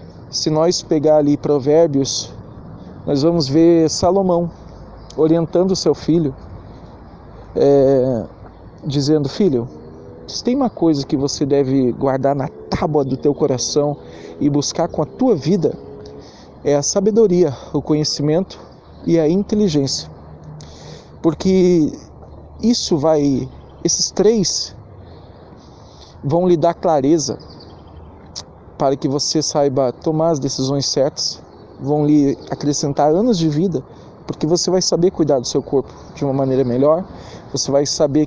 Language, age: Portuguese, 40-59